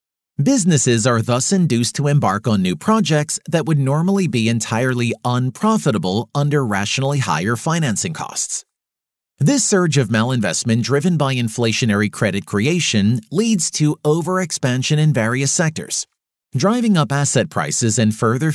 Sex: male